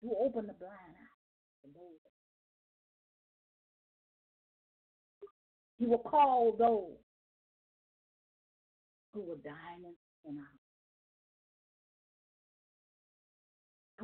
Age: 40-59